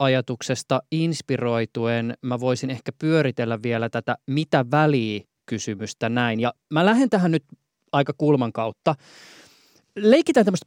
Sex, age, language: male, 20-39, Finnish